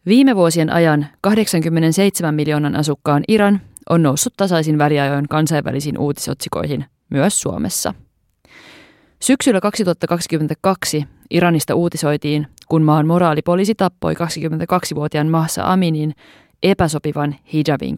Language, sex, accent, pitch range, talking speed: Finnish, female, native, 145-175 Hz, 95 wpm